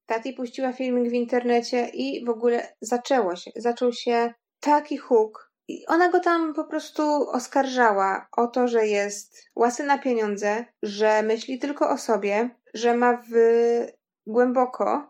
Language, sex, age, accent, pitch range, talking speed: Polish, female, 20-39, native, 225-275 Hz, 145 wpm